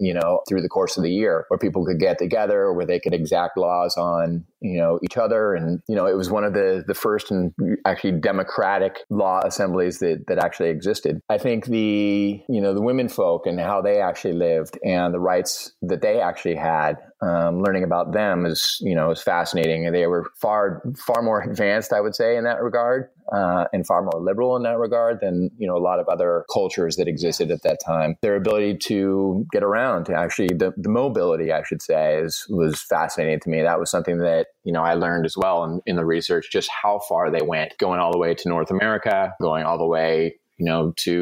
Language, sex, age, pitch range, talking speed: English, male, 30-49, 85-110 Hz, 225 wpm